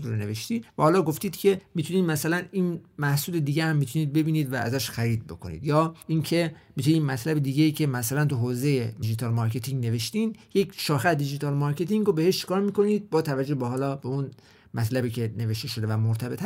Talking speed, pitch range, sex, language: 170 wpm, 125-170 Hz, male, Persian